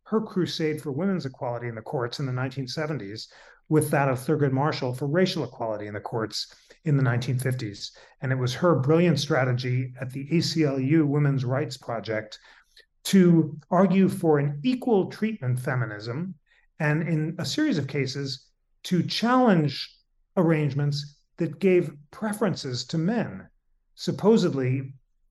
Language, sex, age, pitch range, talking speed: English, male, 40-59, 130-160 Hz, 140 wpm